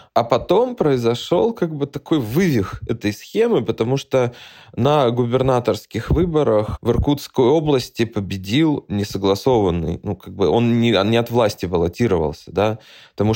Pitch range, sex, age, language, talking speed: 105-130 Hz, male, 20-39, Russian, 140 wpm